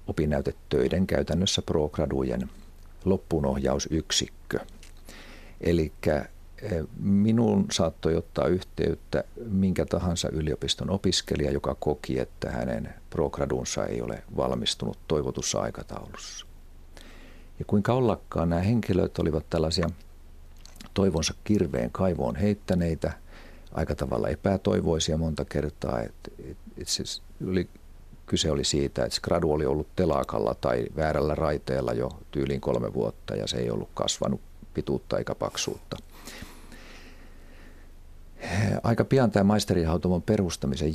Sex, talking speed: male, 100 wpm